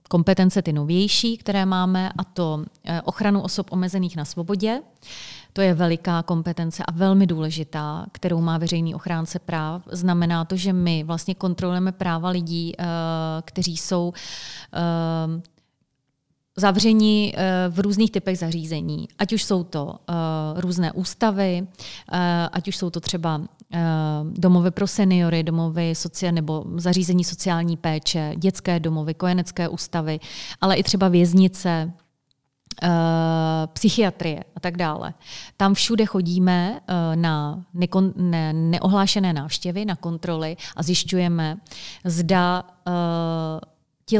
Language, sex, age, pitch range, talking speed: Czech, female, 30-49, 165-185 Hz, 110 wpm